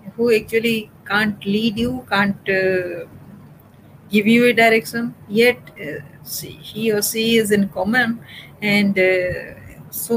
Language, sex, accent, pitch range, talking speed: English, female, Indian, 195-240 Hz, 130 wpm